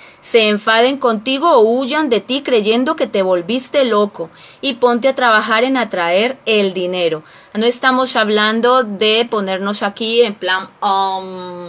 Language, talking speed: Spanish, 150 wpm